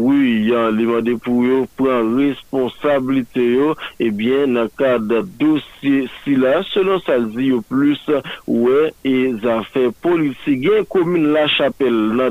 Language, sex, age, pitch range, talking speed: French, male, 50-69, 120-140 Hz, 135 wpm